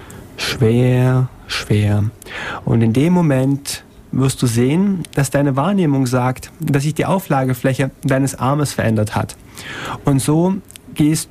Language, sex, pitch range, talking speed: German, male, 115-150 Hz, 125 wpm